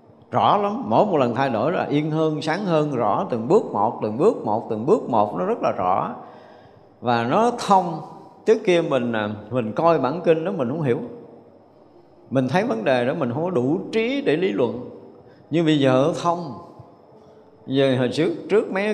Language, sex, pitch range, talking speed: Vietnamese, male, 125-170 Hz, 200 wpm